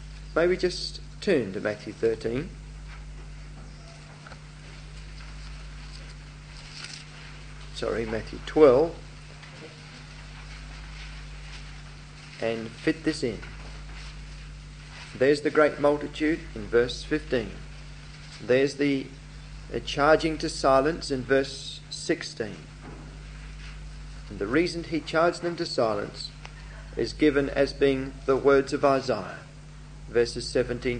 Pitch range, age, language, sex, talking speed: 140-165 Hz, 40-59, English, male, 90 wpm